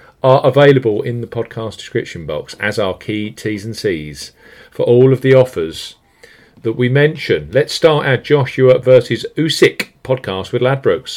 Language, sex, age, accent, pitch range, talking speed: English, male, 40-59, British, 95-130 Hz, 160 wpm